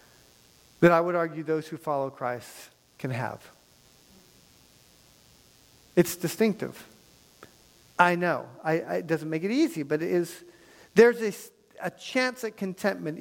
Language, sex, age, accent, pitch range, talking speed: English, male, 50-69, American, 150-190 Hz, 135 wpm